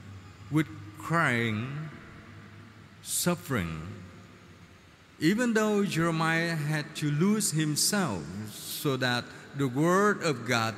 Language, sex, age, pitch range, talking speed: Vietnamese, male, 50-69, 110-175 Hz, 85 wpm